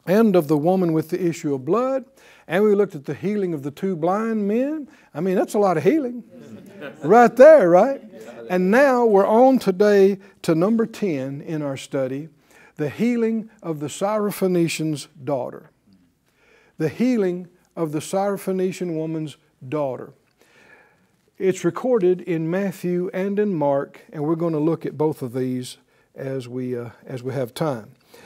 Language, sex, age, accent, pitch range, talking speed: English, male, 60-79, American, 145-200 Hz, 160 wpm